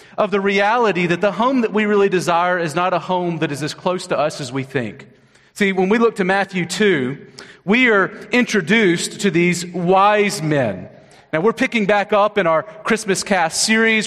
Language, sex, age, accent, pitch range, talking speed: English, male, 40-59, American, 160-210 Hz, 200 wpm